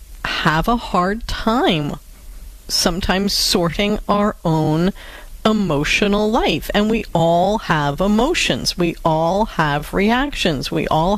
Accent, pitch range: American, 160-220 Hz